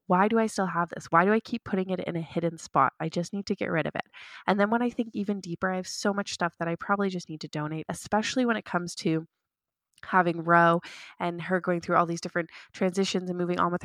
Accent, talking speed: American, 270 wpm